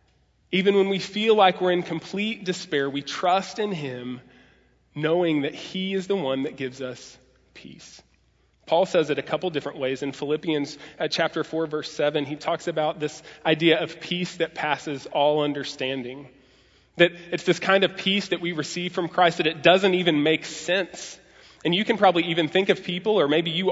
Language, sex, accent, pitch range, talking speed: English, male, American, 150-190 Hz, 190 wpm